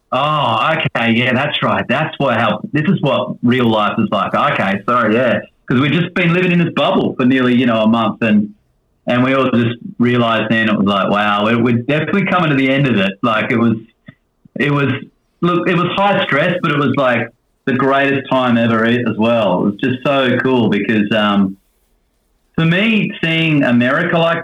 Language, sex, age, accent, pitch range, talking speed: English, male, 30-49, Australian, 115-145 Hz, 205 wpm